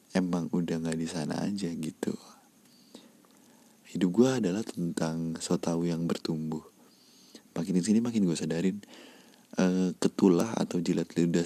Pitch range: 80-100 Hz